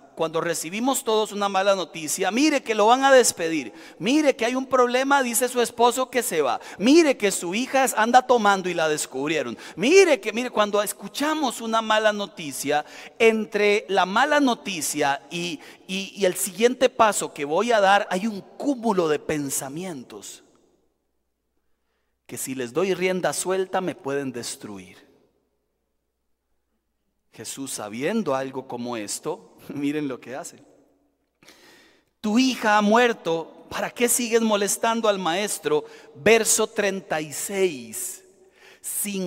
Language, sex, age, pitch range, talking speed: Spanish, male, 40-59, 140-230 Hz, 140 wpm